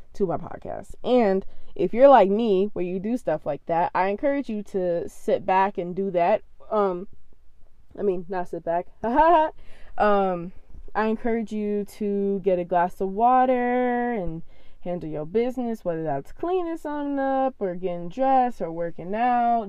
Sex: female